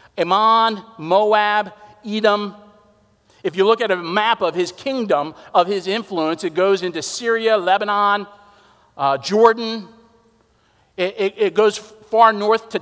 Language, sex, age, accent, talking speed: English, male, 50-69, American, 135 wpm